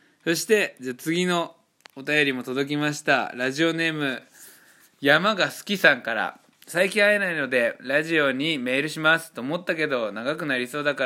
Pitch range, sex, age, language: 140-185 Hz, male, 20-39, Japanese